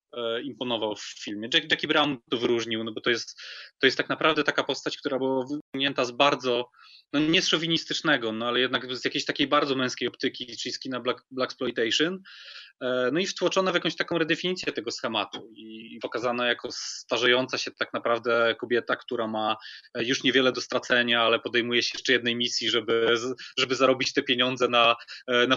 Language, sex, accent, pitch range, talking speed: Polish, male, native, 115-145 Hz, 180 wpm